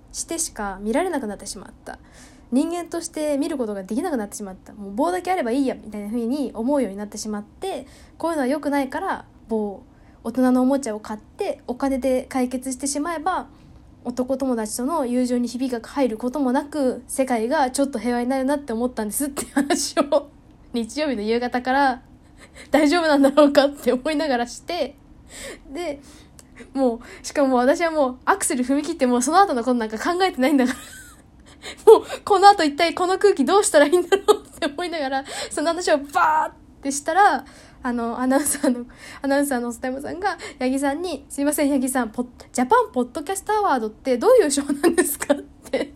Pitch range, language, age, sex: 245-320 Hz, Japanese, 10-29, female